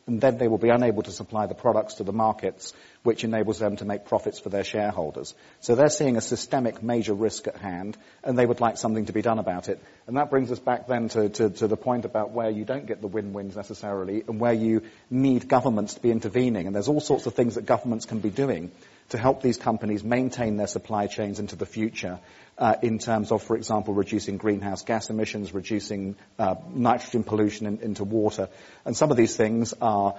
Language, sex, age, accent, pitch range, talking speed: English, male, 40-59, British, 105-120 Hz, 225 wpm